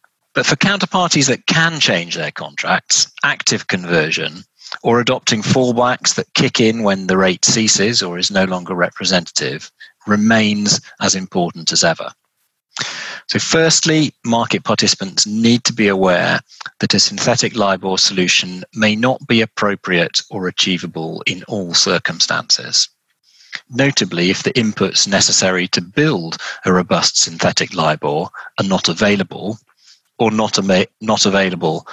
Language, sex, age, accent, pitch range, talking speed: English, male, 40-59, British, 95-125 Hz, 130 wpm